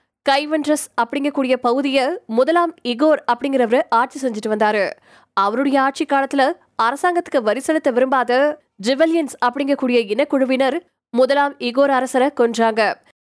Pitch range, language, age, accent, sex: 245-310 Hz, Tamil, 20-39, native, female